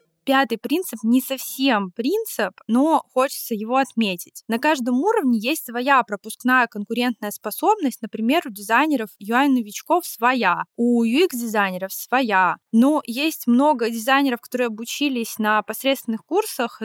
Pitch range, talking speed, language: 215-275 Hz, 125 wpm, Russian